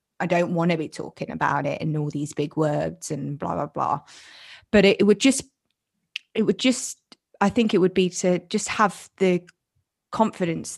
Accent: British